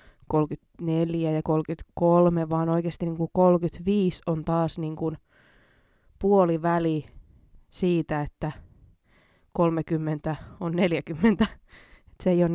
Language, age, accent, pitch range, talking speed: Finnish, 20-39, native, 160-185 Hz, 100 wpm